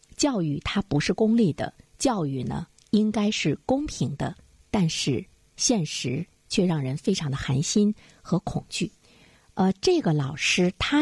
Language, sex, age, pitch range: Chinese, female, 50-69, 150-205 Hz